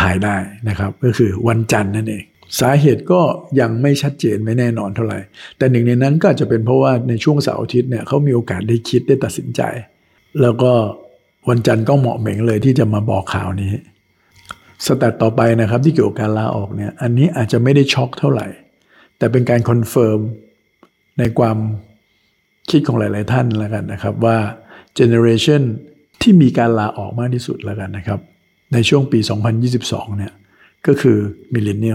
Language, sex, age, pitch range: Thai, male, 60-79, 105-125 Hz